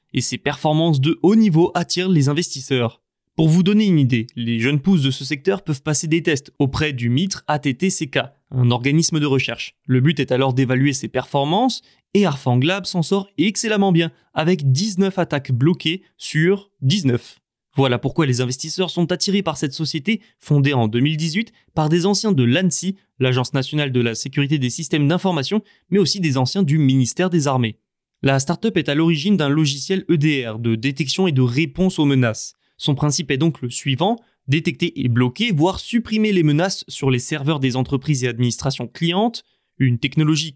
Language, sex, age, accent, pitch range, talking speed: French, male, 20-39, French, 135-185 Hz, 180 wpm